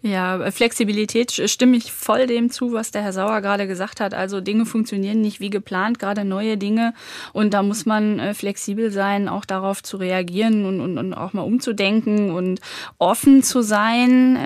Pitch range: 195-225 Hz